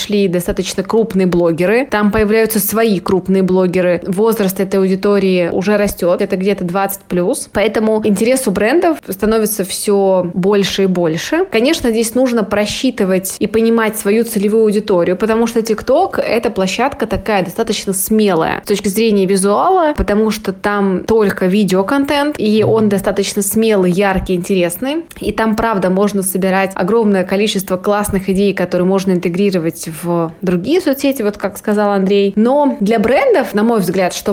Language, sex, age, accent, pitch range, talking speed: Russian, female, 20-39, native, 190-225 Hz, 150 wpm